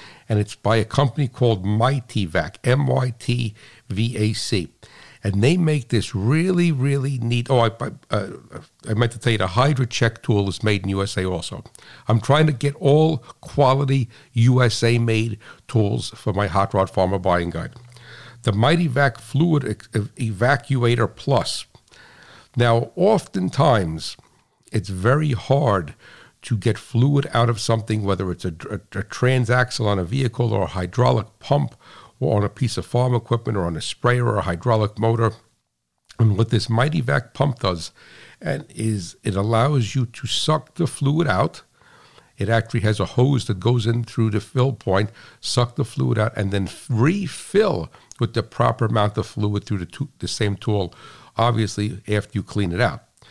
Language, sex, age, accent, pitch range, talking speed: English, male, 60-79, American, 105-130 Hz, 165 wpm